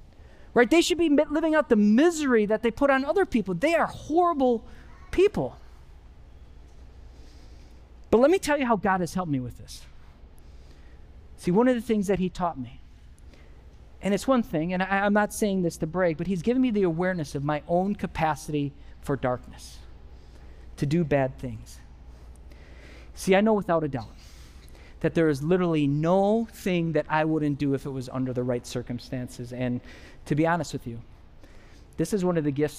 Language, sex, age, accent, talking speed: English, male, 40-59, American, 185 wpm